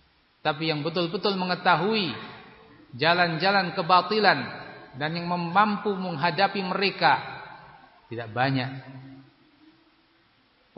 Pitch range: 130-160 Hz